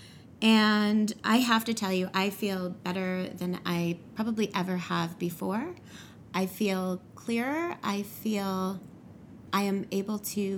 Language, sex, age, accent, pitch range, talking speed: English, female, 30-49, American, 190-230 Hz, 135 wpm